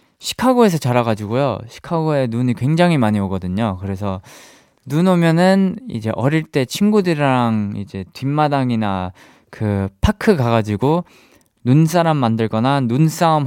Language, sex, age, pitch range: Korean, male, 20-39, 115-185 Hz